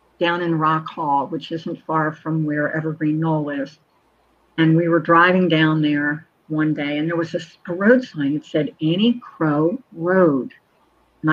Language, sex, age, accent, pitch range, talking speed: English, female, 50-69, American, 155-195 Hz, 170 wpm